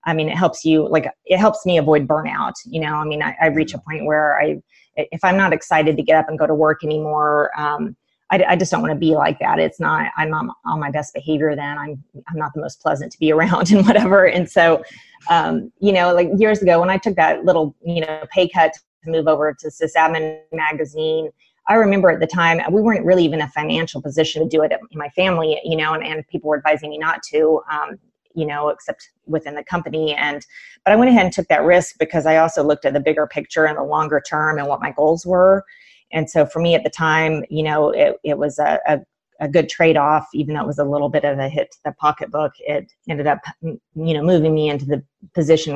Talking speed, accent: 250 wpm, American